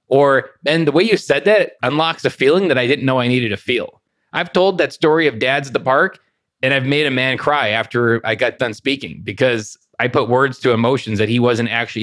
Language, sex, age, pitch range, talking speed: English, male, 30-49, 115-150 Hz, 240 wpm